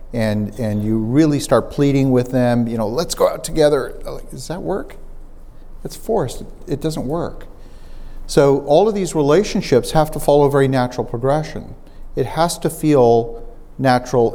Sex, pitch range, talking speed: male, 120-145 Hz, 170 wpm